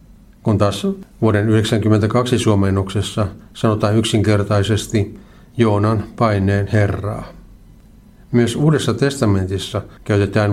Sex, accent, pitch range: male, native, 105-120 Hz